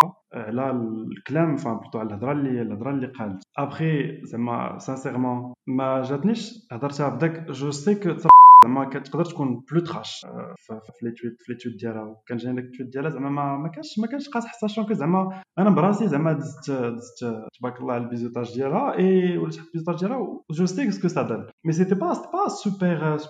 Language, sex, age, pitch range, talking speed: French, male, 20-39, 130-175 Hz, 50 wpm